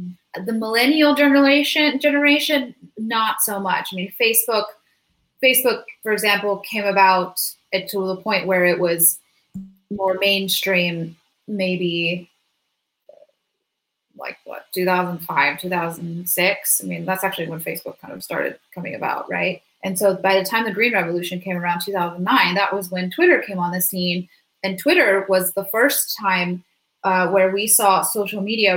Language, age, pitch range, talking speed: English, 20-39, 185-230 Hz, 150 wpm